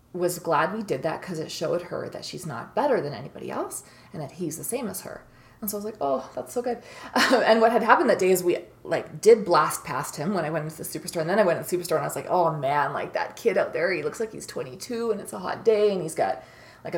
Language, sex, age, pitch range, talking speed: English, female, 20-39, 165-215 Hz, 295 wpm